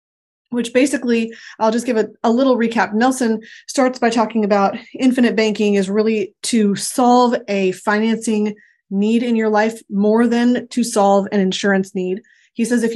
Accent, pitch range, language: American, 200-235 Hz, English